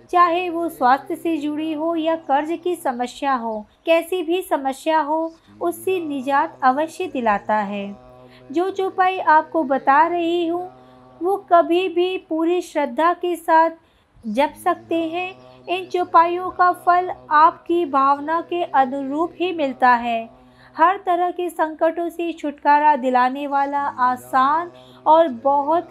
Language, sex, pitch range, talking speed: Hindi, female, 280-350 Hz, 135 wpm